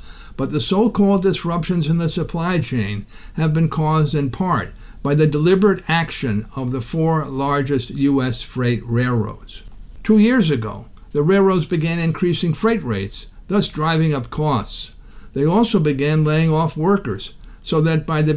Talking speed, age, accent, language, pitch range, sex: 155 wpm, 60-79, American, English, 135-180 Hz, male